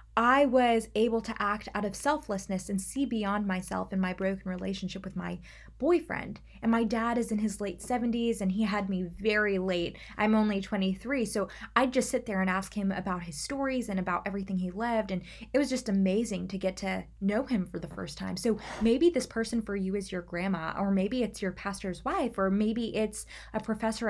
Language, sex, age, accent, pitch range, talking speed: English, female, 20-39, American, 190-225 Hz, 215 wpm